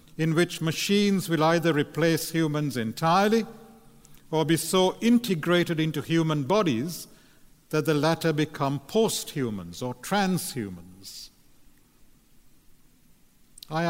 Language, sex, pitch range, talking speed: English, male, 140-175 Hz, 105 wpm